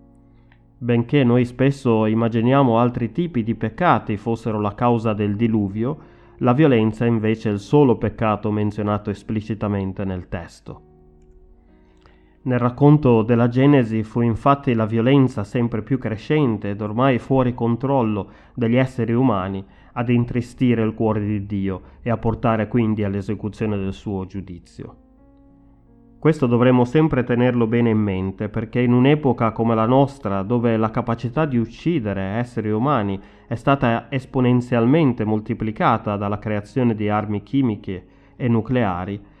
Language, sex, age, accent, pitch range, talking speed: Italian, male, 30-49, native, 105-125 Hz, 135 wpm